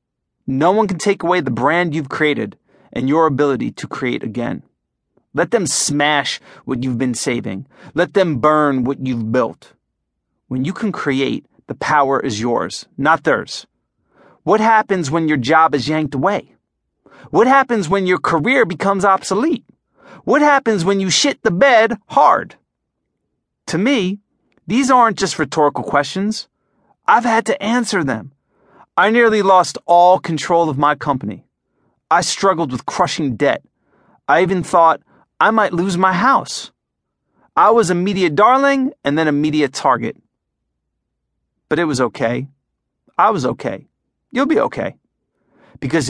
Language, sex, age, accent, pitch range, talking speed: English, male, 30-49, American, 150-210 Hz, 150 wpm